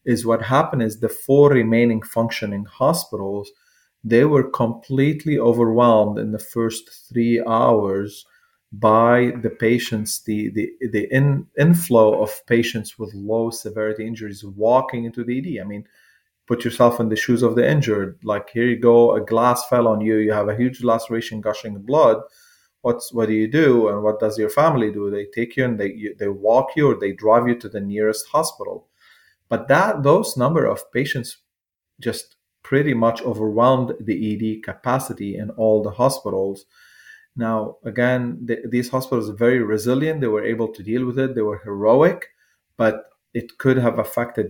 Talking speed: 175 wpm